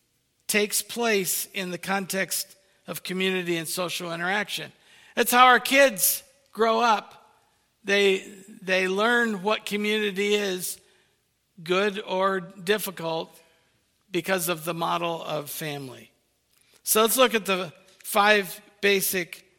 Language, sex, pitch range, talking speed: English, male, 165-205 Hz, 115 wpm